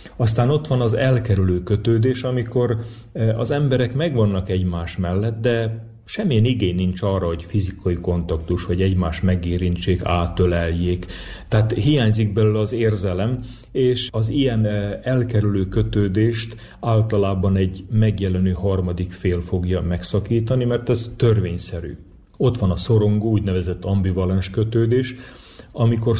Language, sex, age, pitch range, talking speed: Hungarian, male, 40-59, 95-115 Hz, 120 wpm